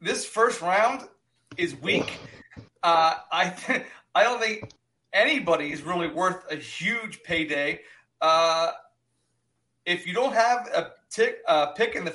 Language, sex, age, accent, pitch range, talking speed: English, male, 30-49, American, 160-200 Hz, 145 wpm